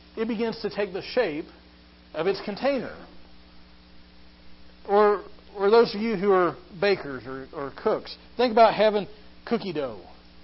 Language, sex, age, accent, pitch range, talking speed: English, male, 40-59, American, 135-220 Hz, 145 wpm